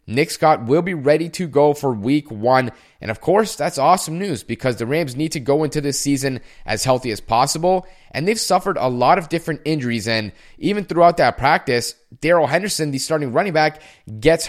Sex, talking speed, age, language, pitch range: male, 205 wpm, 30-49, English, 125-160 Hz